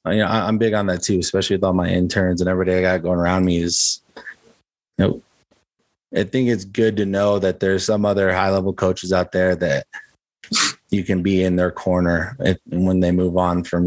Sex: male